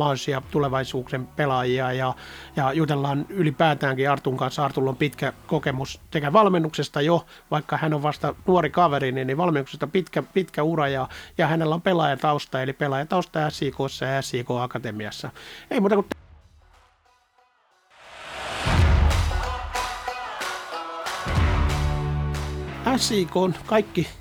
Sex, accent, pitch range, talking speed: male, native, 135-165 Hz, 110 wpm